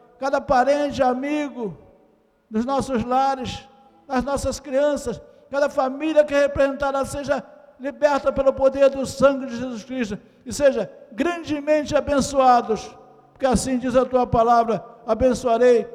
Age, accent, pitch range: 60-79, Brazilian, 205-275 Hz